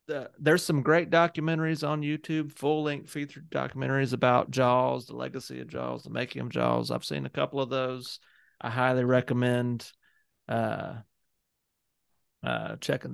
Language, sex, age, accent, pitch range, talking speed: English, male, 30-49, American, 120-150 Hz, 150 wpm